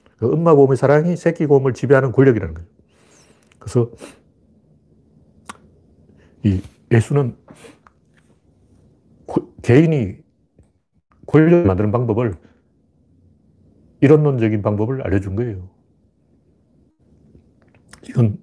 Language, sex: Korean, male